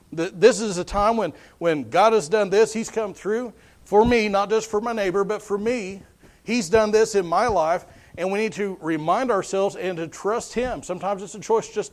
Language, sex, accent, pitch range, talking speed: English, male, American, 175-220 Hz, 220 wpm